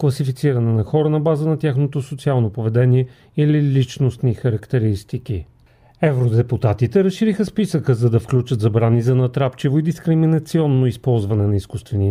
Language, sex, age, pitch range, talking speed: Bulgarian, male, 40-59, 115-140 Hz, 130 wpm